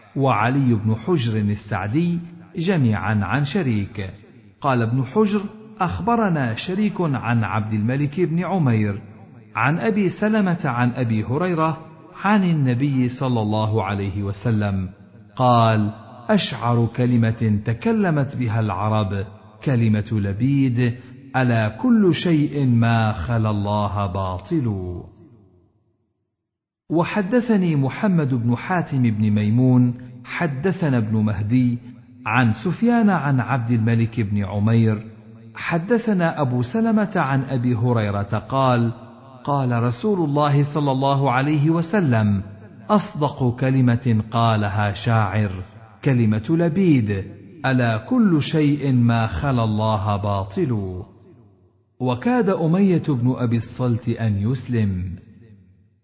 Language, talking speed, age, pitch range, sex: Arabic, 100 wpm, 50-69, 110-150 Hz, male